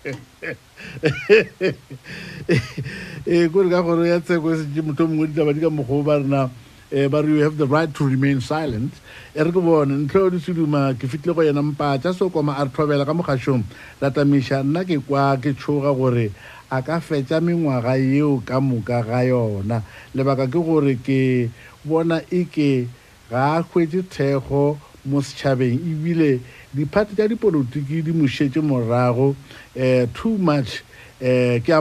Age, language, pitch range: 60-79, English, 130-160 Hz